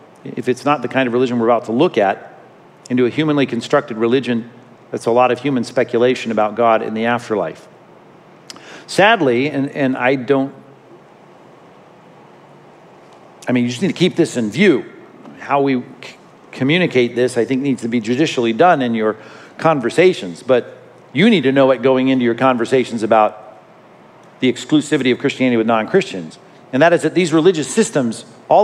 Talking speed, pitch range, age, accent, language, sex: 175 wpm, 120-155 Hz, 50-69, American, English, male